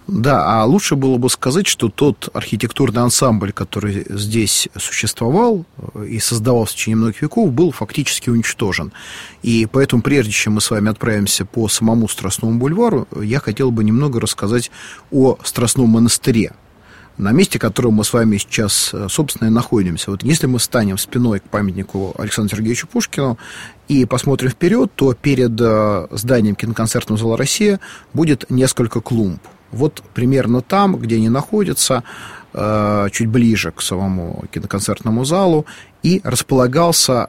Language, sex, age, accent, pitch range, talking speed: Russian, male, 30-49, native, 110-135 Hz, 140 wpm